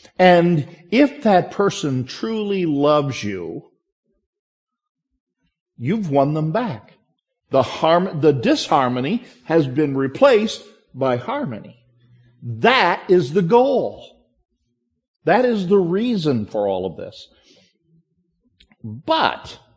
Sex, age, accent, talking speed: male, 50-69, American, 100 wpm